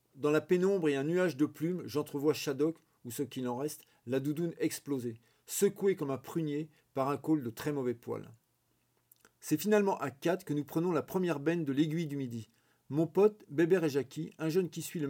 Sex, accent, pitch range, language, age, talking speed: male, French, 135-180 Hz, French, 40-59, 210 wpm